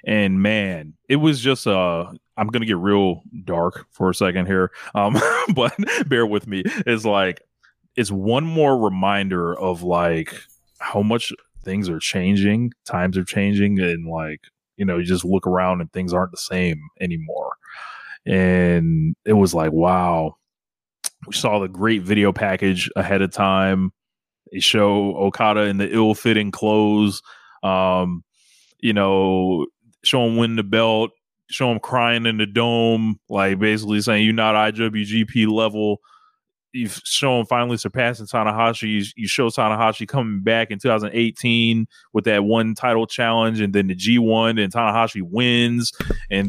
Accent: American